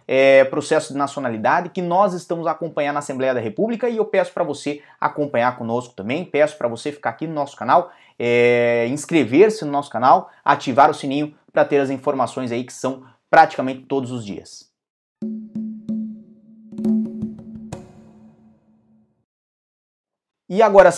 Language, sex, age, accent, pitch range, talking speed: Portuguese, male, 20-39, Brazilian, 125-160 Hz, 140 wpm